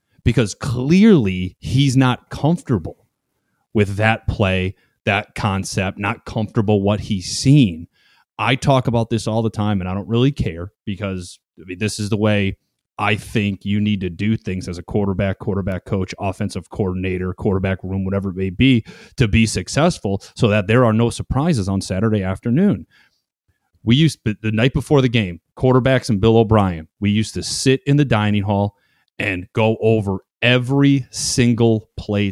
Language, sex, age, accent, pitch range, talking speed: English, male, 30-49, American, 95-120 Hz, 170 wpm